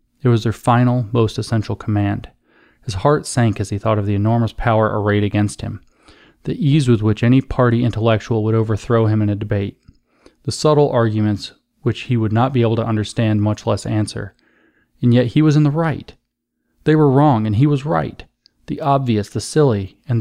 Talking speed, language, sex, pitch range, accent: 195 wpm, English, male, 105-130 Hz, American